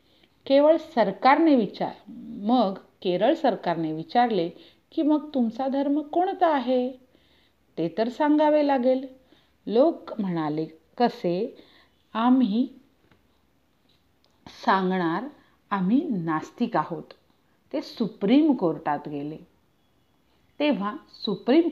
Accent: native